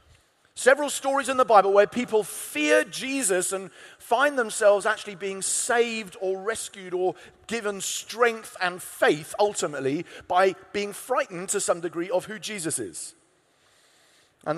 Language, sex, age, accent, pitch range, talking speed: English, male, 40-59, British, 165-230 Hz, 140 wpm